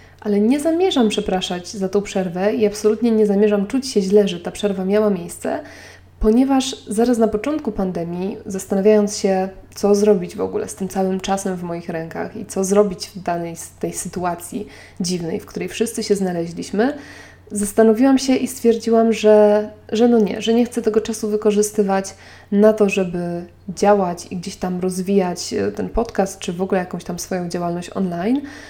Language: Polish